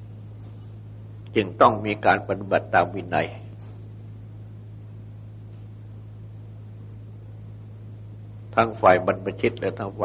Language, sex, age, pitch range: Thai, male, 60-79, 105-110 Hz